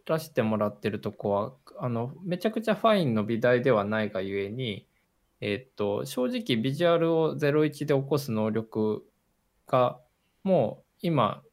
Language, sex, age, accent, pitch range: Japanese, male, 20-39, native, 105-140 Hz